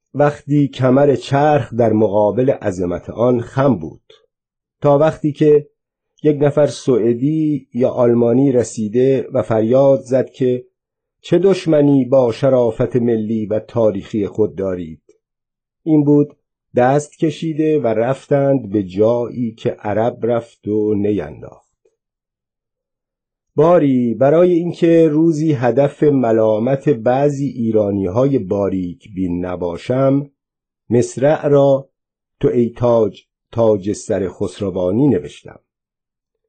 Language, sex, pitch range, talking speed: Persian, male, 110-145 Hz, 105 wpm